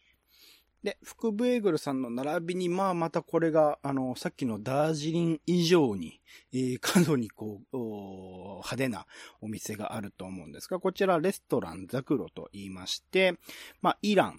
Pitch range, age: 110-180 Hz, 40-59